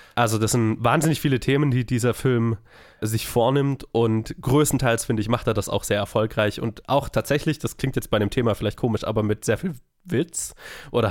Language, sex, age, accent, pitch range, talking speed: German, male, 20-39, German, 105-125 Hz, 205 wpm